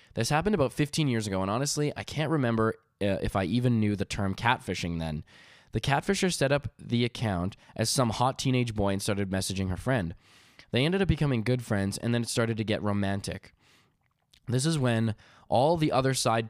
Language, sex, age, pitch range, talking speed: English, male, 20-39, 105-125 Hz, 205 wpm